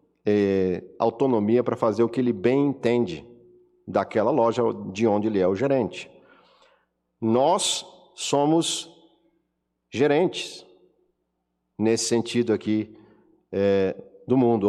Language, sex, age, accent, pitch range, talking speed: Portuguese, male, 50-69, Brazilian, 105-140 Hz, 105 wpm